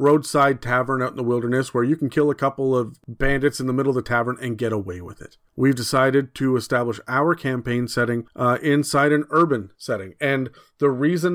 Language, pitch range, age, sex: English, 120-145 Hz, 40-59, male